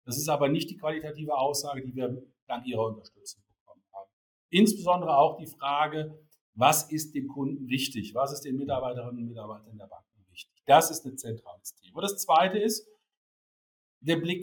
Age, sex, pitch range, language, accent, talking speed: 50-69, male, 125-165 Hz, German, German, 175 wpm